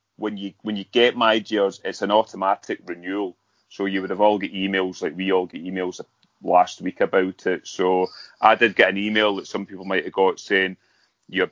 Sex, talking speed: male, 210 wpm